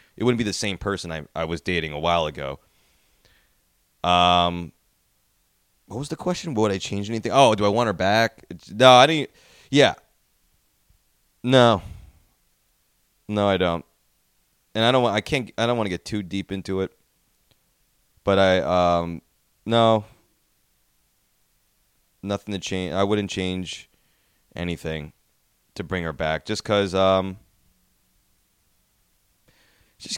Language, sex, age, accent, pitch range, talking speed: English, male, 20-39, American, 85-105 Hz, 140 wpm